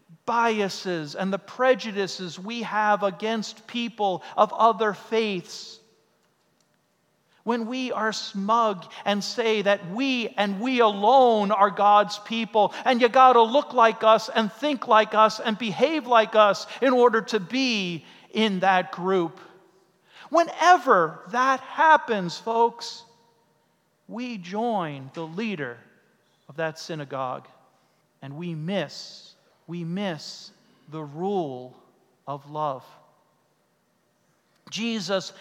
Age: 40-59